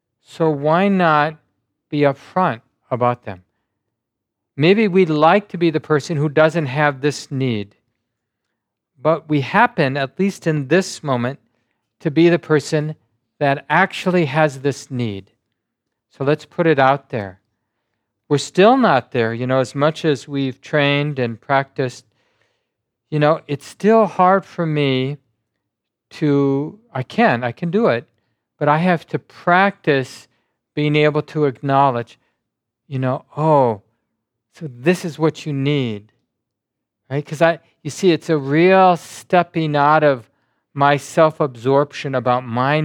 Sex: male